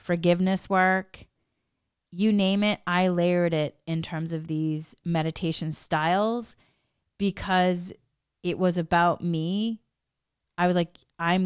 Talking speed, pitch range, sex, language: 120 wpm, 160-190 Hz, female, English